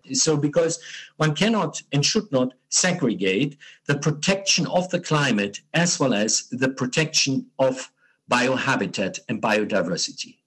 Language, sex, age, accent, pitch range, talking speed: English, male, 50-69, German, 140-185 Hz, 125 wpm